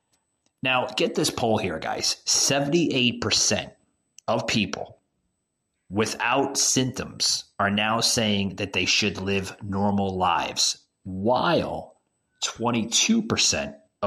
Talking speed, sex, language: 95 wpm, male, English